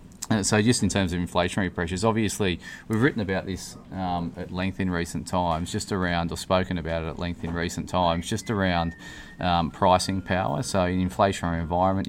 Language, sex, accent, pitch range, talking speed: English, male, Australian, 85-95 Hz, 195 wpm